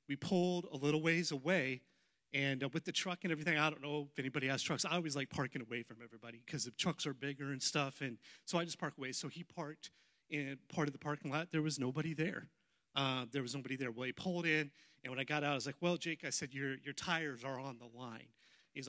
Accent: American